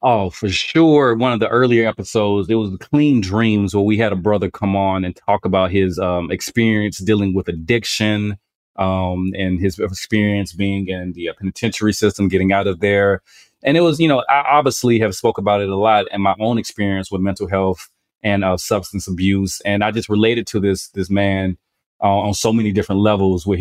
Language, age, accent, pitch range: English, 30-49, American, 95-110 Hz